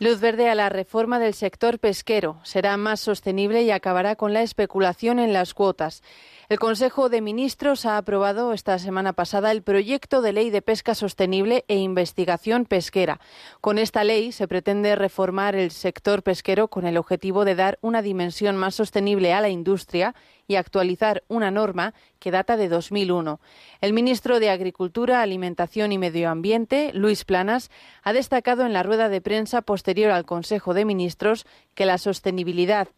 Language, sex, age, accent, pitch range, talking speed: Spanish, female, 30-49, Spanish, 185-220 Hz, 165 wpm